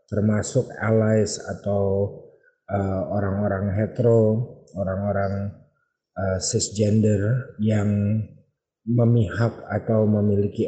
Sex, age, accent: male, 30-49, native